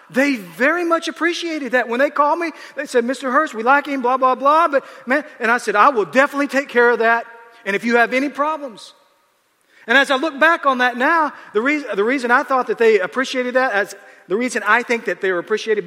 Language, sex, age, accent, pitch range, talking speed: English, male, 40-59, American, 215-295 Hz, 240 wpm